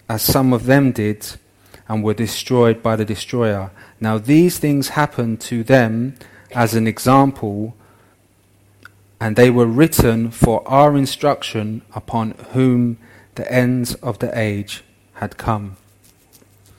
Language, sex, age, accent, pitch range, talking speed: English, male, 30-49, British, 105-125 Hz, 130 wpm